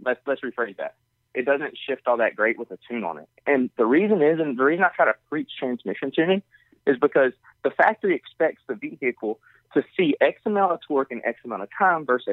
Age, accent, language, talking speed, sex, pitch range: 30-49, American, English, 230 wpm, male, 120-170 Hz